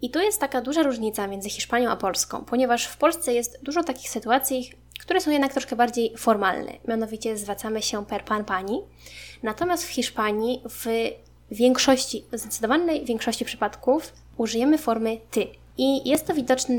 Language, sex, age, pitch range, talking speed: Polish, female, 20-39, 215-260 Hz, 155 wpm